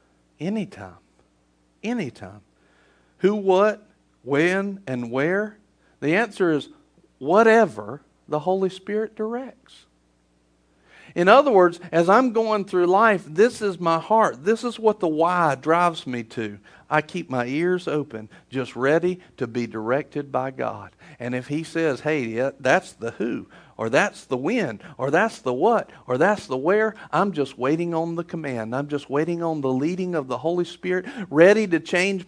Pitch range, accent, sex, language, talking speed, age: 150-220 Hz, American, male, English, 160 wpm, 50-69